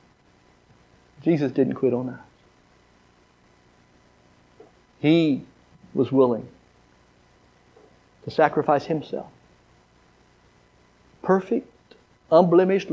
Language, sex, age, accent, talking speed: English, male, 50-69, American, 60 wpm